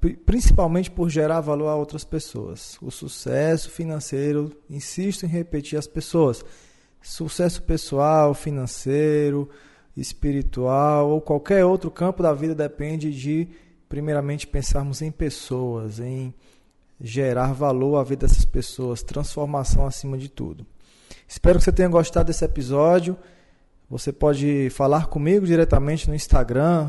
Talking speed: 125 wpm